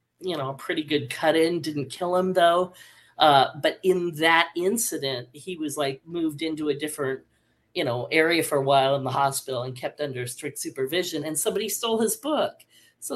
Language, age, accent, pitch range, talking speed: English, 40-59, American, 155-215 Hz, 195 wpm